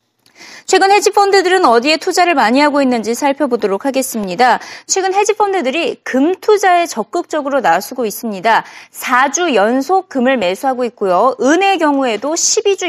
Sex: female